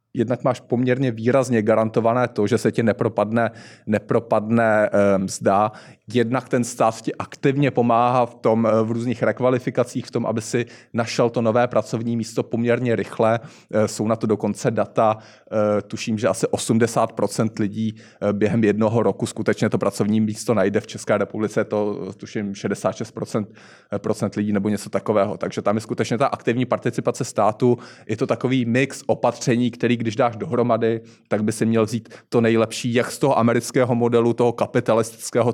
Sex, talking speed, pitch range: male, 155 wpm, 110-125 Hz